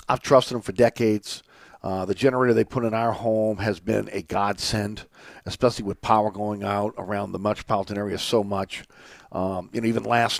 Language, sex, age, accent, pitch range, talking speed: English, male, 50-69, American, 110-130 Hz, 190 wpm